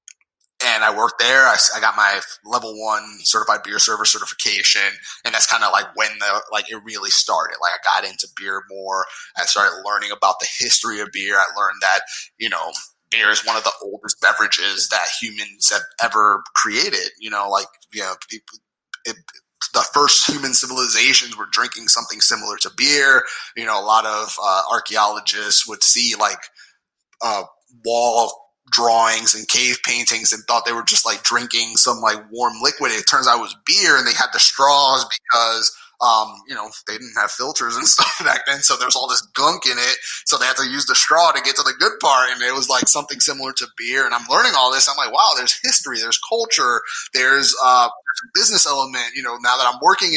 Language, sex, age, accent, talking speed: English, male, 30-49, American, 210 wpm